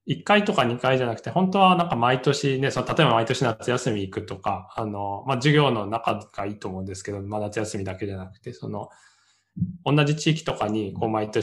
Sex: male